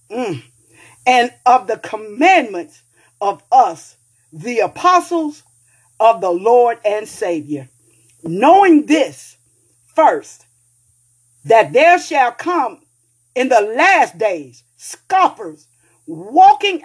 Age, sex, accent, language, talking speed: 50-69, female, American, English, 95 wpm